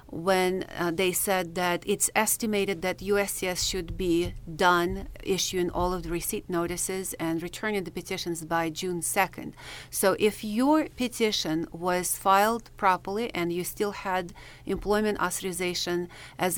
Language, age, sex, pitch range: English, 40-59, female, 175-205 Hz